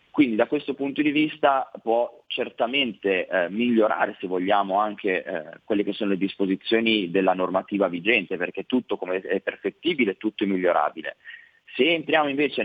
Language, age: Italian, 30-49